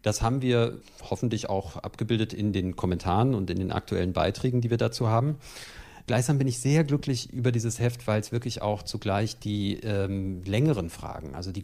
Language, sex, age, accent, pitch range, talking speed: German, male, 50-69, German, 95-120 Hz, 190 wpm